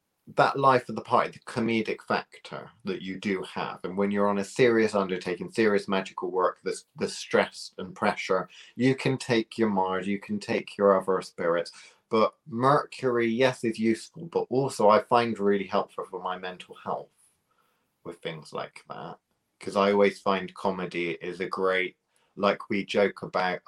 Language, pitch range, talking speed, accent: English, 90-115 Hz, 170 wpm, British